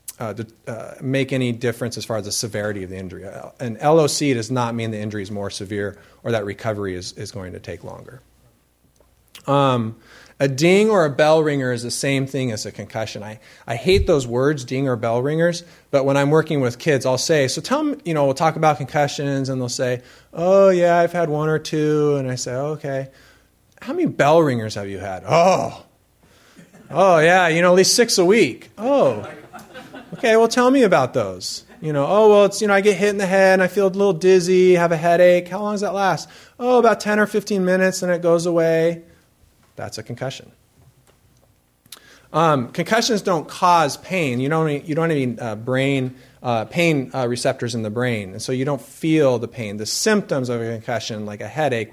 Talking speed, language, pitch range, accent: 215 wpm, English, 110-170 Hz, American